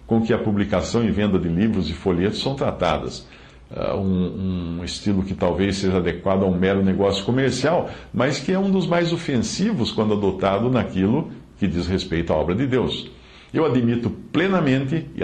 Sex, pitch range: male, 95-125 Hz